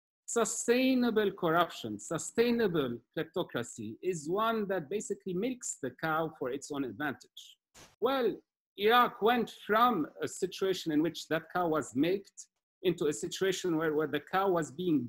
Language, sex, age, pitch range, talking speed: English, male, 50-69, 150-215 Hz, 145 wpm